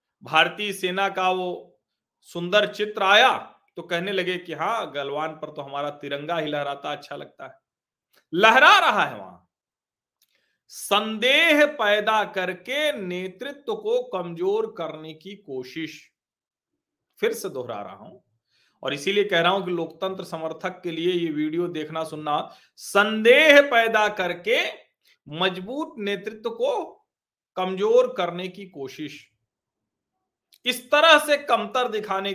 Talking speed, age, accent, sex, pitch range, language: 130 wpm, 40-59, native, male, 160-215 Hz, Hindi